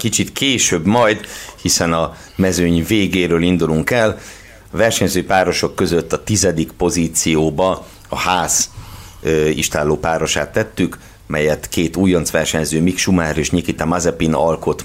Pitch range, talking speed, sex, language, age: 80-105 Hz, 120 wpm, male, Hungarian, 50-69